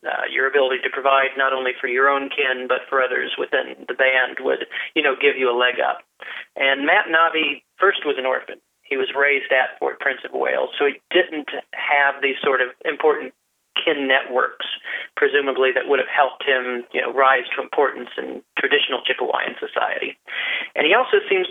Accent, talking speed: American, 195 wpm